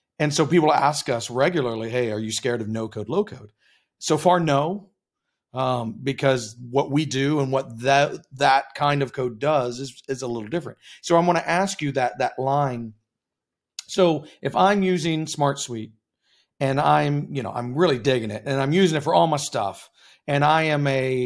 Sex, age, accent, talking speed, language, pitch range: male, 40-59, American, 200 wpm, English, 125-155 Hz